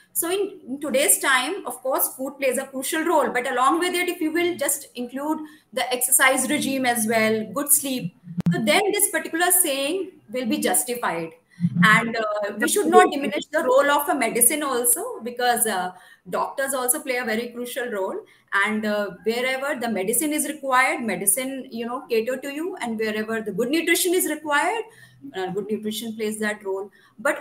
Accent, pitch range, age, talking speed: native, 225-300 Hz, 30-49, 185 wpm